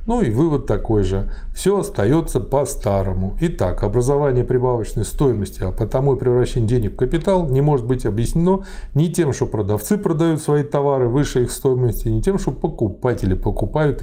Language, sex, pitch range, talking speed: Russian, male, 110-140 Hz, 165 wpm